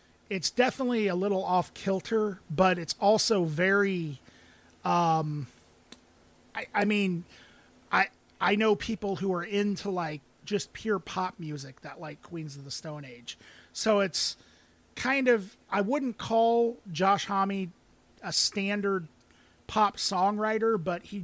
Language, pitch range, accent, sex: English, 165-205 Hz, American, male